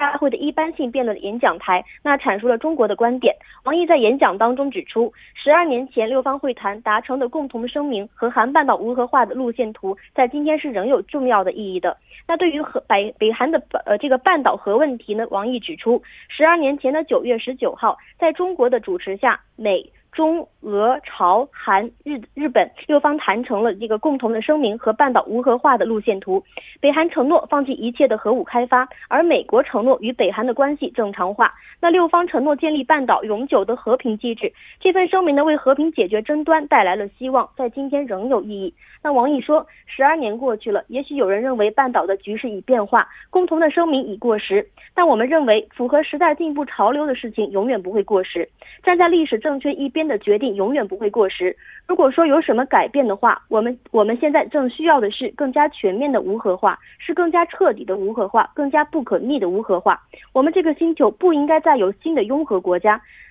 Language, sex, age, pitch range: Korean, female, 20-39, 225-310 Hz